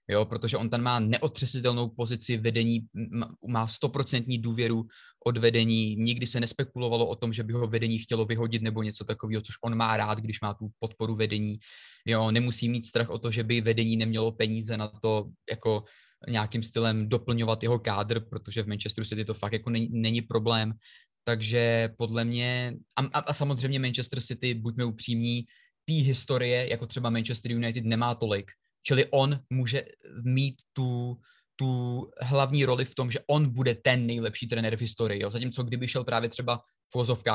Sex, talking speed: male, 170 wpm